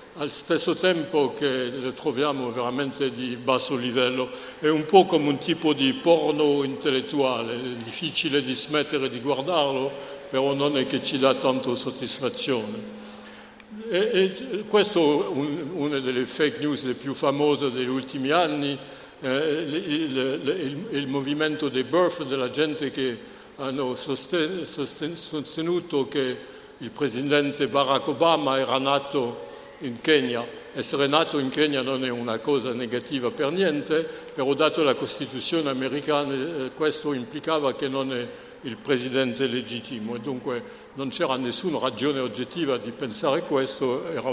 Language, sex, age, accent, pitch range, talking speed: Italian, male, 60-79, French, 130-155 Hz, 140 wpm